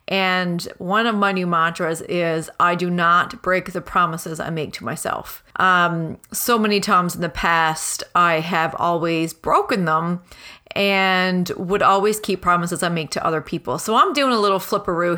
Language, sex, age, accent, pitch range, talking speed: English, female, 30-49, American, 170-205 Hz, 180 wpm